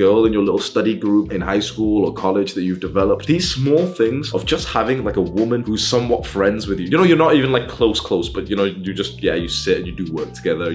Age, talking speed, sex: 20-39, 270 wpm, male